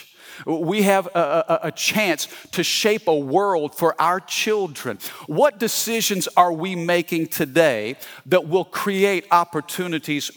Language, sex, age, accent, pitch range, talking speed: English, male, 50-69, American, 135-185 Hz, 135 wpm